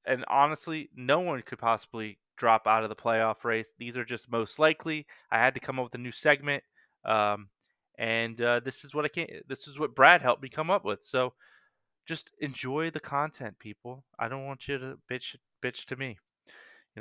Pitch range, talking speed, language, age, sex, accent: 115-145 Hz, 210 wpm, English, 30-49, male, American